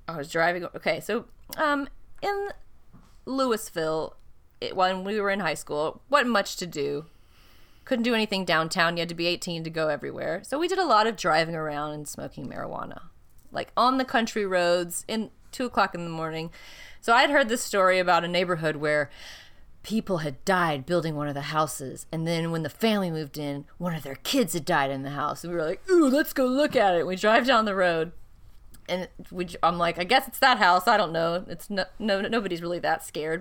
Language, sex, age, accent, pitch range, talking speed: English, female, 30-49, American, 165-255 Hz, 215 wpm